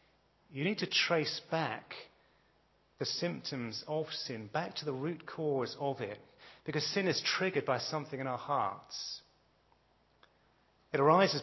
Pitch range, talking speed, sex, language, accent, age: 125-155 Hz, 140 wpm, male, English, British, 30-49